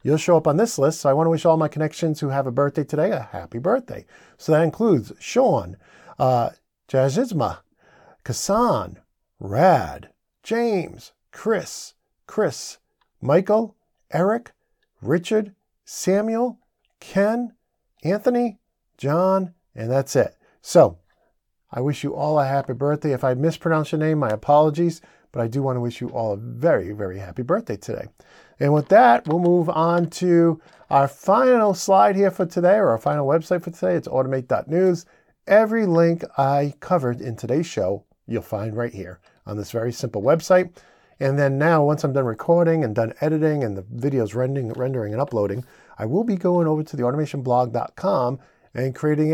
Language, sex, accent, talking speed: English, male, American, 165 wpm